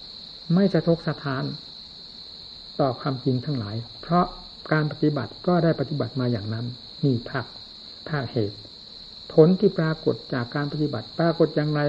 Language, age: Thai, 60-79